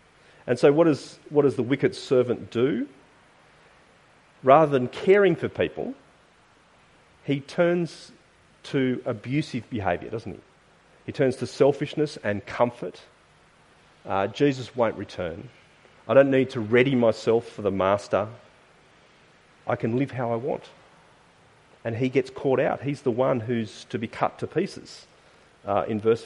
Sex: male